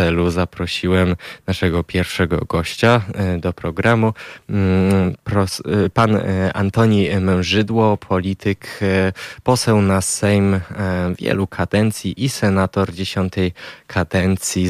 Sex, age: male, 20-39